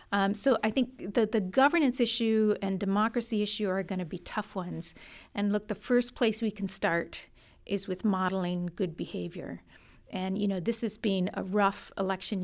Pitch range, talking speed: 190-220 Hz, 190 wpm